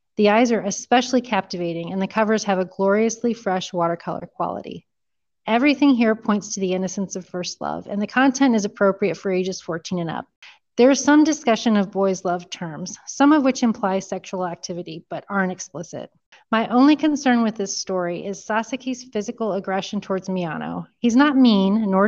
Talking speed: 180 wpm